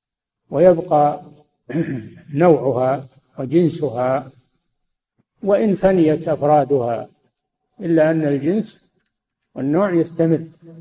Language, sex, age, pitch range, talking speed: Arabic, male, 50-69, 135-170 Hz, 60 wpm